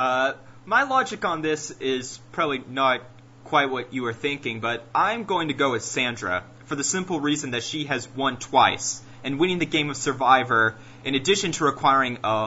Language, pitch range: English, 115-135 Hz